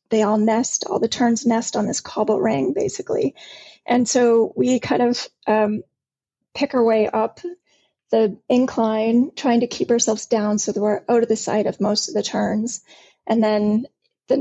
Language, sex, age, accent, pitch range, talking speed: English, female, 30-49, American, 210-245 Hz, 185 wpm